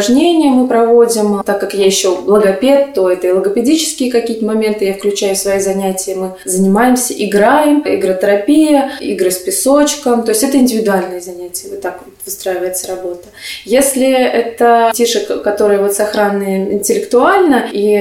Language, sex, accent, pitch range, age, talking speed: Russian, female, native, 195-230 Hz, 20-39, 145 wpm